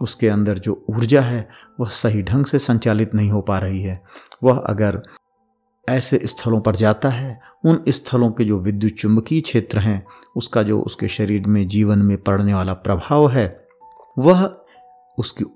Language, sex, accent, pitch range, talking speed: Hindi, male, native, 105-130 Hz, 165 wpm